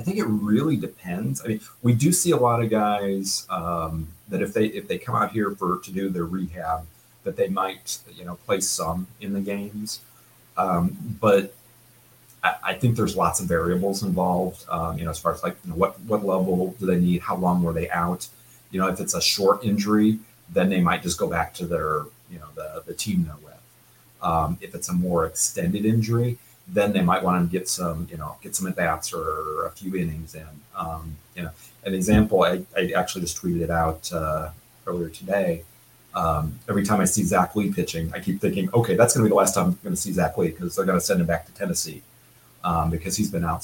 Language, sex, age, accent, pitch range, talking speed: English, male, 30-49, American, 85-105 Hz, 230 wpm